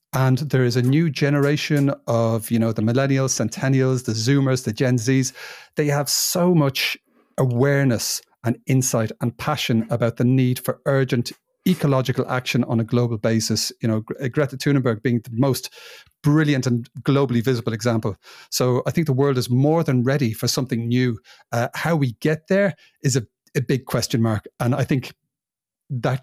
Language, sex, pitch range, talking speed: English, male, 120-145 Hz, 175 wpm